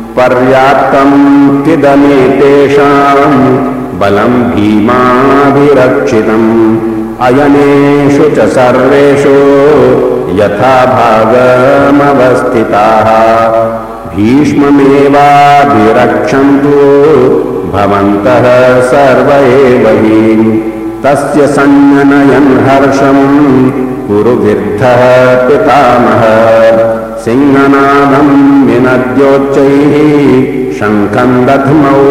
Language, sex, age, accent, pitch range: Hindi, male, 60-79, native, 110-140 Hz